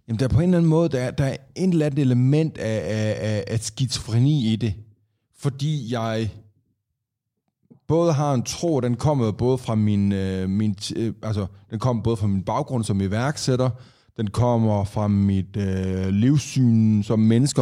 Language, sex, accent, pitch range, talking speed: Danish, male, native, 105-130 Hz, 175 wpm